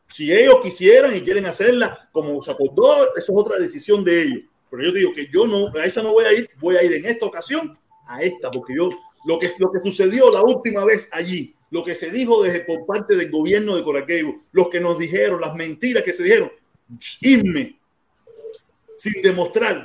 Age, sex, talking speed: 40-59, male, 215 wpm